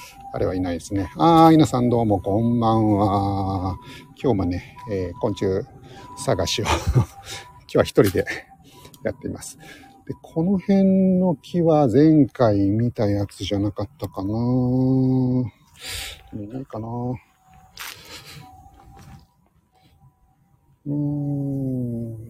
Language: Japanese